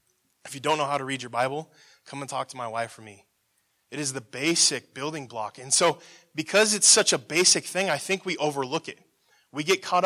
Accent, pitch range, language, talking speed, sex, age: American, 140-180 Hz, English, 235 wpm, male, 20-39